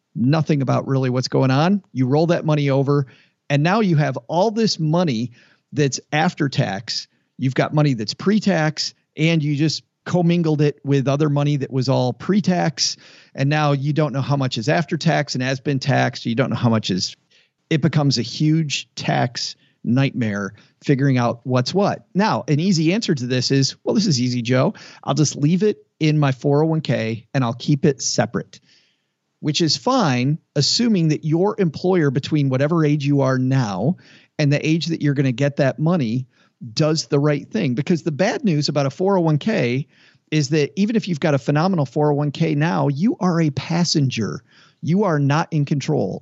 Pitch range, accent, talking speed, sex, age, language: 130-160 Hz, American, 190 wpm, male, 40-59, English